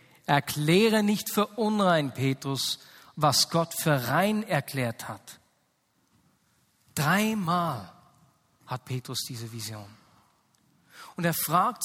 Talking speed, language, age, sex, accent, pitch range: 95 wpm, German, 40-59, male, German, 150-210 Hz